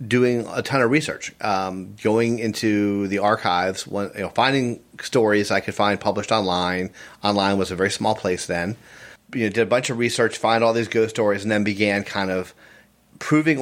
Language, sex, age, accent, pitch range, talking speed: English, male, 30-49, American, 95-115 Hz, 205 wpm